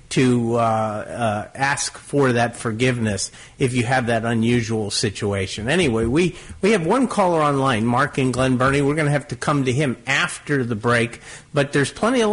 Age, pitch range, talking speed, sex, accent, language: 50-69, 115-155 Hz, 190 wpm, male, American, English